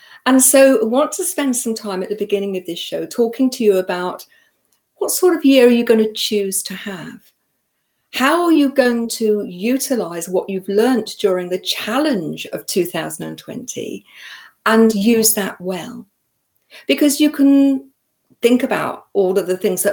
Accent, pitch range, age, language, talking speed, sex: British, 195-260 Hz, 50-69, English, 170 wpm, female